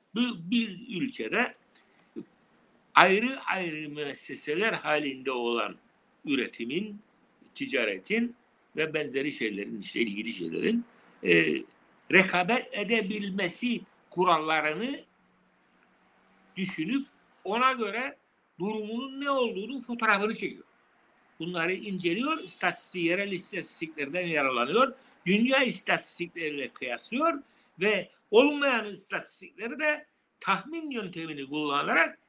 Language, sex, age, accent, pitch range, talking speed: Turkish, male, 60-79, native, 180-260 Hz, 80 wpm